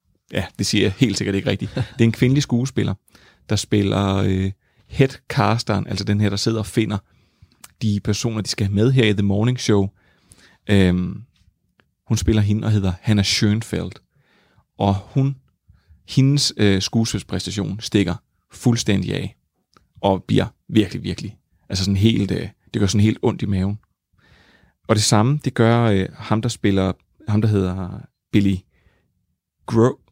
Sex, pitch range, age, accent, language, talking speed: male, 95-115 Hz, 30-49, native, Danish, 160 wpm